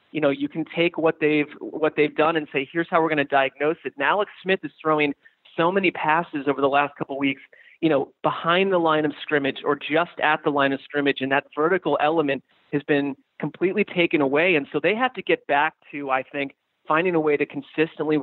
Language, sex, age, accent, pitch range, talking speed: English, male, 30-49, American, 140-175 Hz, 235 wpm